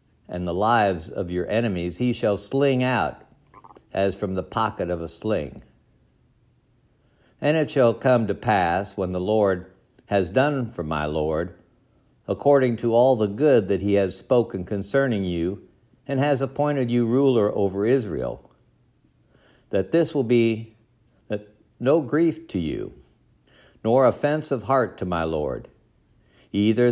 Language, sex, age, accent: English, male, 60-79, American